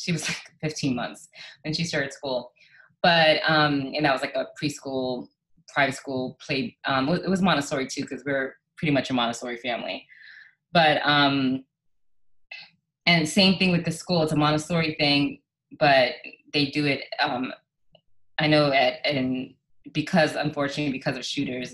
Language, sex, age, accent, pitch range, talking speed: English, female, 20-39, American, 135-160 Hz, 155 wpm